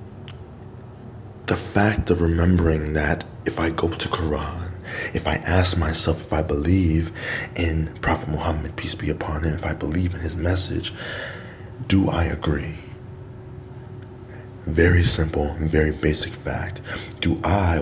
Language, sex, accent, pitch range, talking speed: English, male, American, 80-115 Hz, 135 wpm